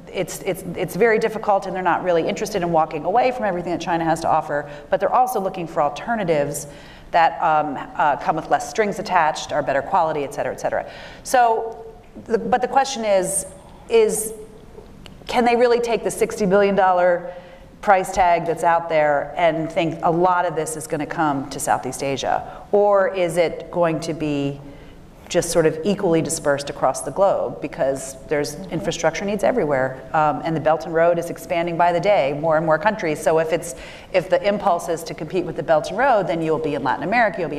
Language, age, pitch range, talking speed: English, 40-59, 155-195 Hz, 205 wpm